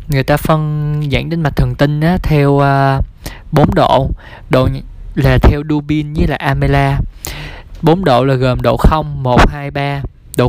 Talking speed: 170 wpm